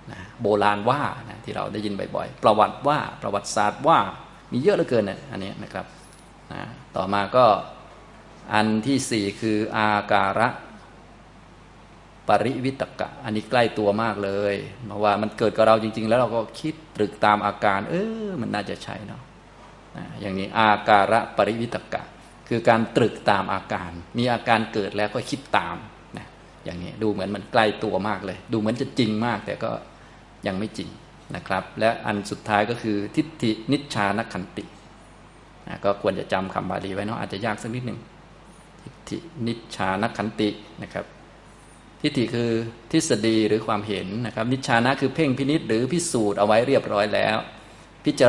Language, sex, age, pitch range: Thai, male, 20-39, 105-125 Hz